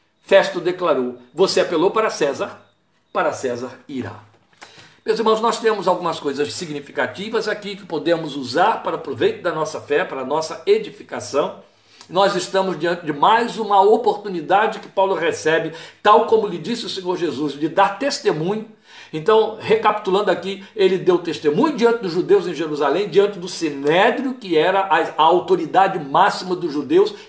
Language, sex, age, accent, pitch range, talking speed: Portuguese, male, 60-79, Brazilian, 170-250 Hz, 155 wpm